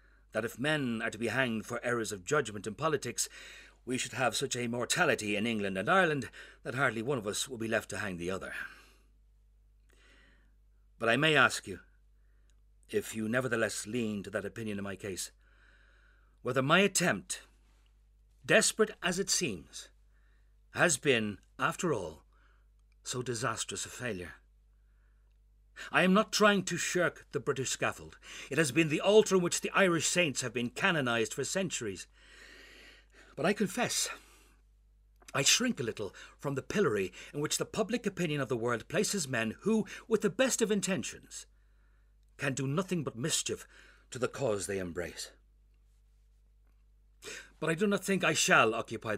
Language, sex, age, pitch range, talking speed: English, male, 60-79, 105-175 Hz, 160 wpm